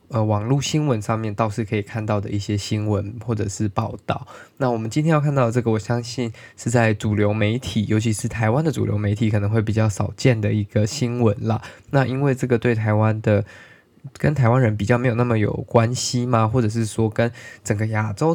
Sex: male